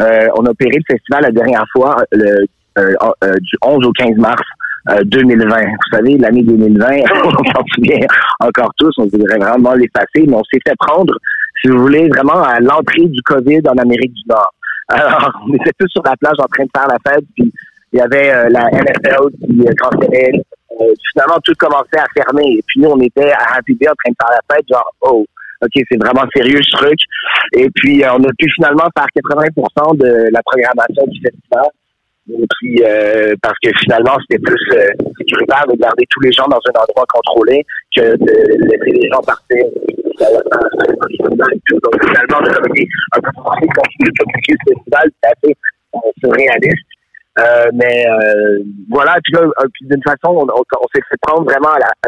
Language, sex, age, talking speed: French, male, 50-69, 195 wpm